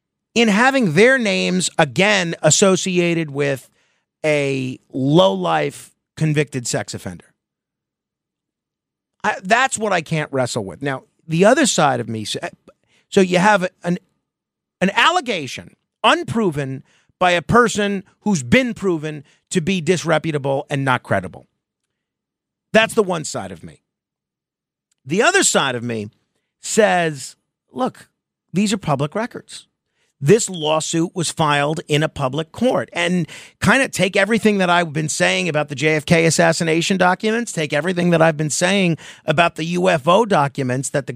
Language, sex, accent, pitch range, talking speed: English, male, American, 145-190 Hz, 135 wpm